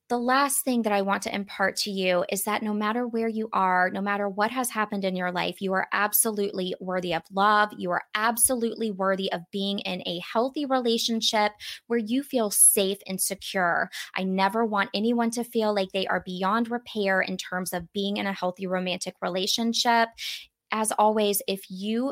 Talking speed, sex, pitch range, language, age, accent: 195 wpm, female, 185-225 Hz, English, 20-39, American